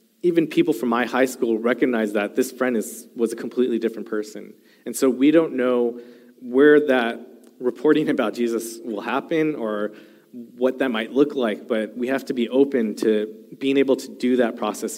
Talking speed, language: 190 wpm, English